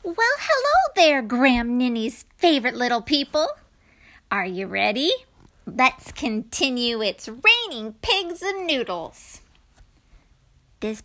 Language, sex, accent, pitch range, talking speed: English, female, American, 220-320 Hz, 105 wpm